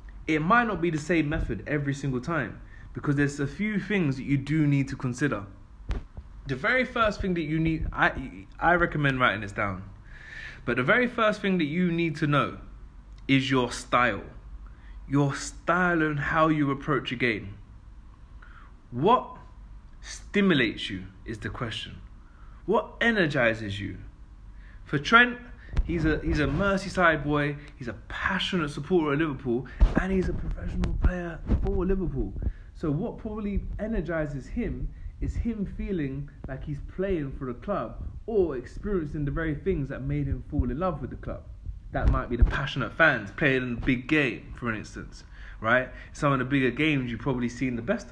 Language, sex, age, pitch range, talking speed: English, male, 20-39, 115-175 Hz, 170 wpm